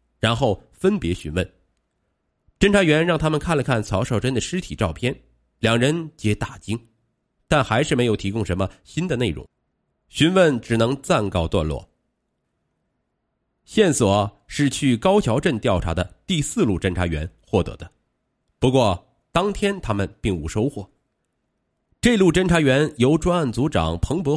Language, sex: Chinese, male